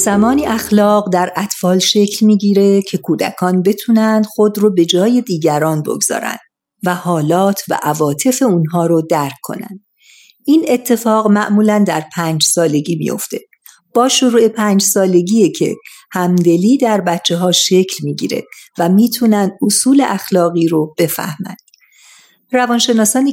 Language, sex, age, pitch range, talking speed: Persian, female, 50-69, 175-235 Hz, 120 wpm